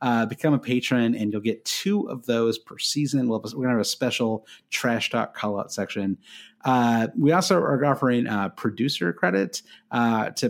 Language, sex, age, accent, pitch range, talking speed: English, male, 30-49, American, 105-130 Hz, 195 wpm